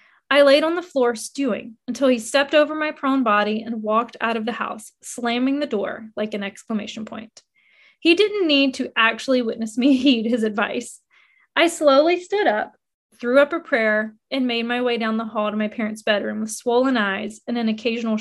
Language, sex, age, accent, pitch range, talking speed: English, female, 20-39, American, 220-280 Hz, 200 wpm